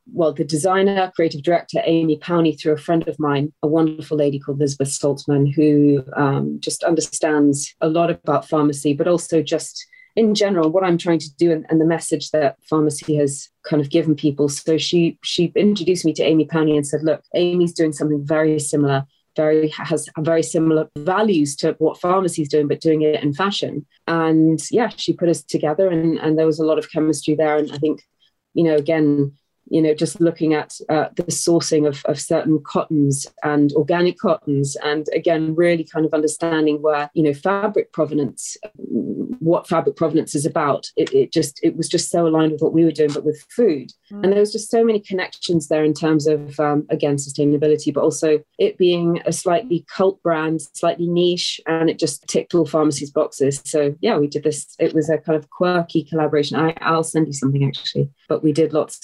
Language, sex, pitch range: English, female, 150-170 Hz